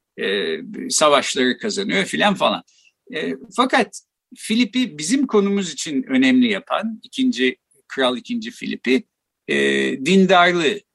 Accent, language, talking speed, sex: native, Turkish, 90 wpm, male